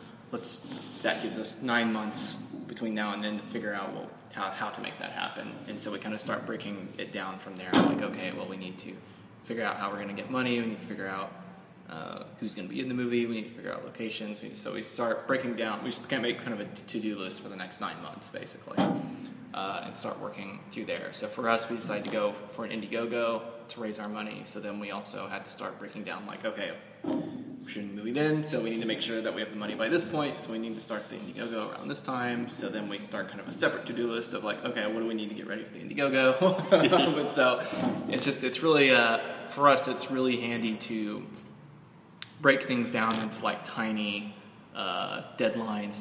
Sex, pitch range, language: male, 105-120 Hz, English